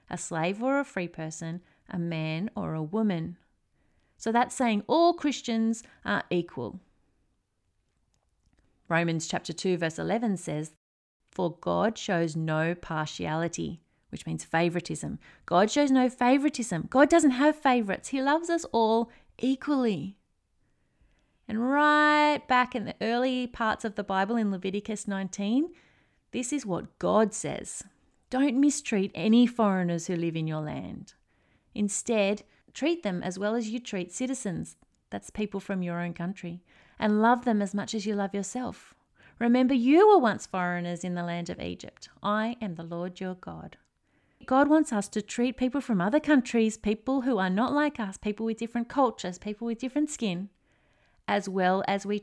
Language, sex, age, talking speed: English, female, 30-49, 160 wpm